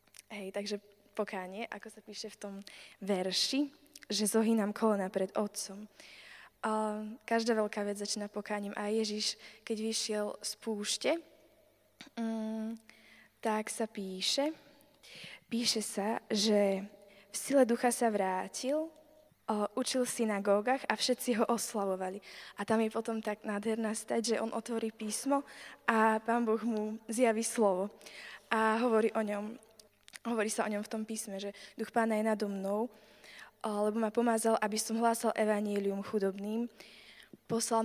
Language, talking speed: Czech, 135 wpm